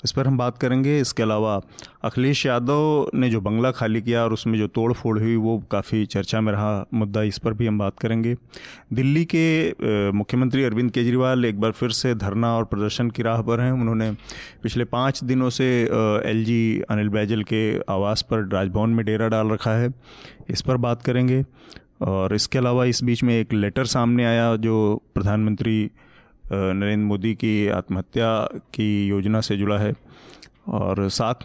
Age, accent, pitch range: 30-49, native, 105-125 Hz